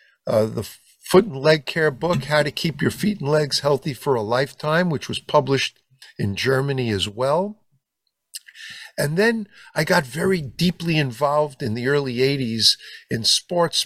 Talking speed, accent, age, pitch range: 165 wpm, American, 50-69, 110-145 Hz